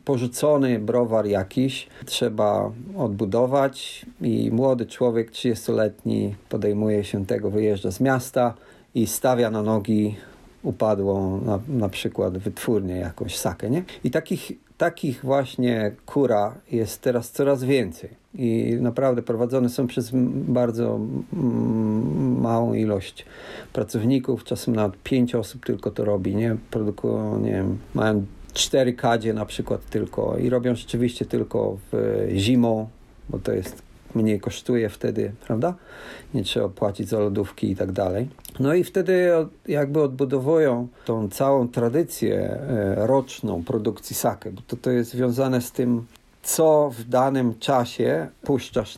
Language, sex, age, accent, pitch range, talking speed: Polish, male, 50-69, native, 105-130 Hz, 135 wpm